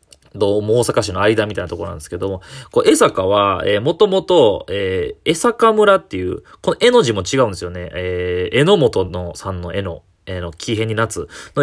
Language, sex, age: Japanese, male, 20-39